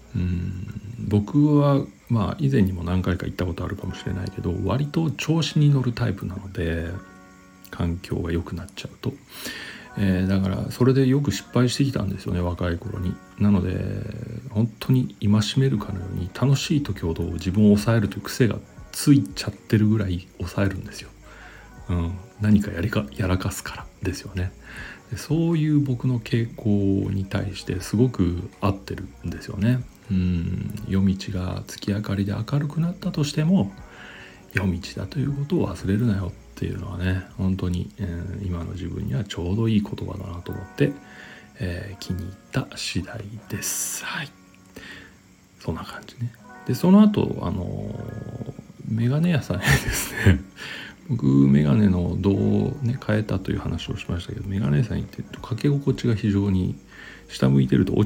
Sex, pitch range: male, 95-120 Hz